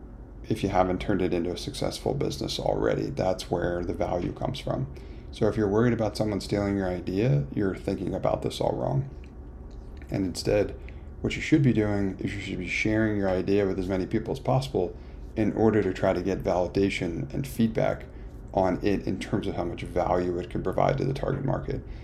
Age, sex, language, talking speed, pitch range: 30-49, male, English, 205 wpm, 85-105 Hz